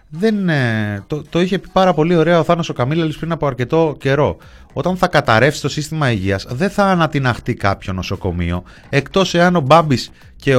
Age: 30-49